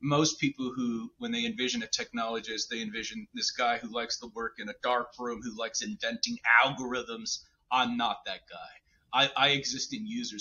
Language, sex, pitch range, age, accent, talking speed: English, male, 120-165 Hz, 30-49, American, 190 wpm